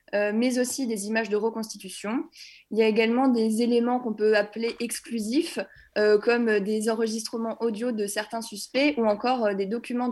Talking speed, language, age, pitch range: 160 wpm, French, 20-39, 210-250 Hz